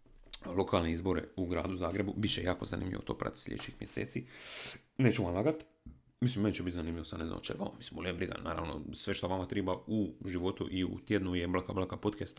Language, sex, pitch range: Croatian, male, 90-105 Hz